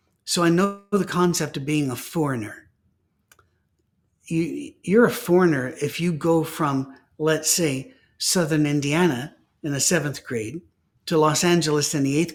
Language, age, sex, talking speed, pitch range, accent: English, 60-79, male, 145 wpm, 135-175 Hz, American